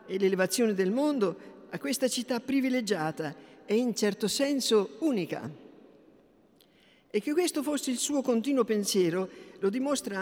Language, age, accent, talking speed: Italian, 50-69, native, 135 wpm